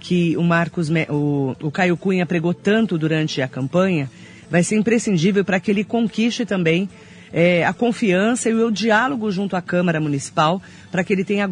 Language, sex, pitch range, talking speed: Portuguese, female, 165-205 Hz, 180 wpm